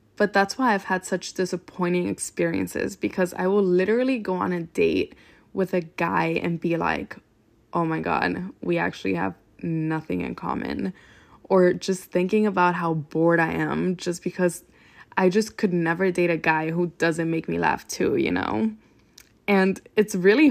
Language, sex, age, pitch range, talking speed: English, female, 10-29, 170-210 Hz, 175 wpm